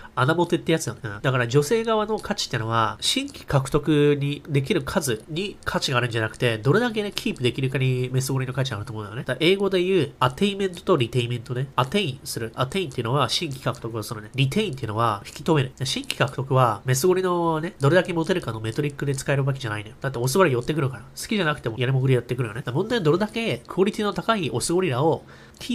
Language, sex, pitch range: Japanese, male, 125-180 Hz